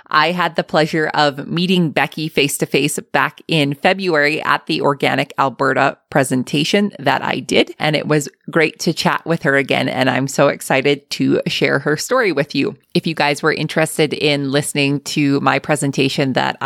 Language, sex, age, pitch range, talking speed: English, female, 20-39, 140-170 Hz, 175 wpm